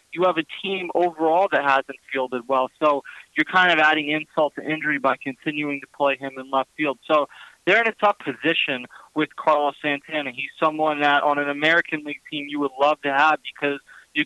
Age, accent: 20-39, American